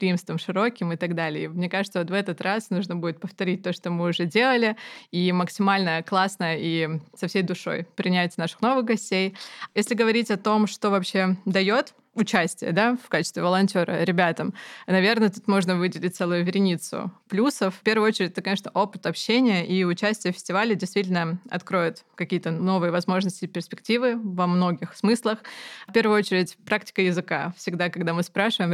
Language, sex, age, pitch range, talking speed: Russian, female, 20-39, 175-205 Hz, 165 wpm